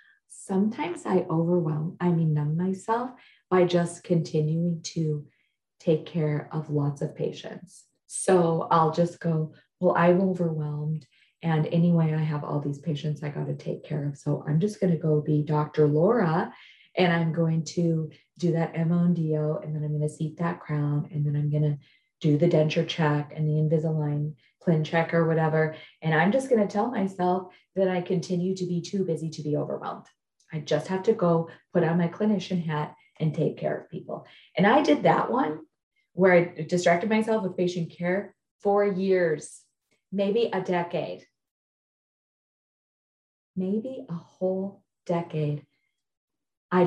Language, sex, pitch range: English, female, 155-180 Hz